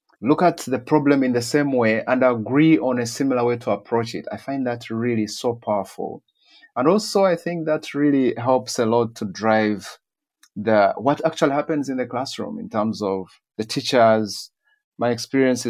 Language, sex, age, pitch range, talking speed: English, male, 30-49, 105-145 Hz, 185 wpm